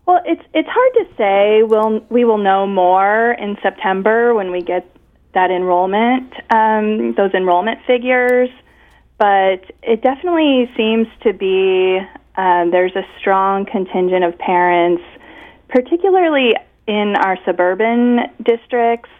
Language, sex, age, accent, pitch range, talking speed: English, female, 30-49, American, 185-230 Hz, 125 wpm